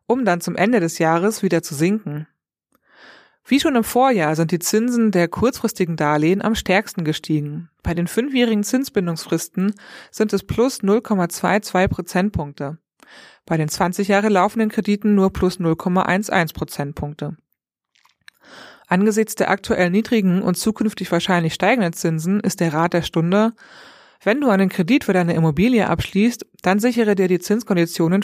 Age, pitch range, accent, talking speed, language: 30-49, 170-210 Hz, German, 145 wpm, German